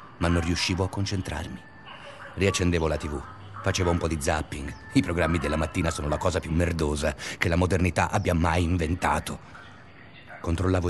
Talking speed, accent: 160 wpm, native